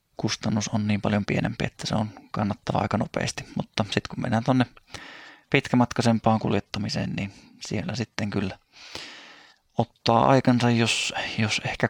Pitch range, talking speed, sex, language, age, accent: 100-115 Hz, 135 wpm, male, Finnish, 20-39, native